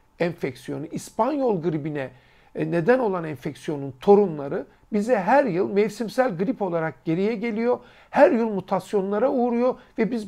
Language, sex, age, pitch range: Turkish, male, 60-79, 165-225 Hz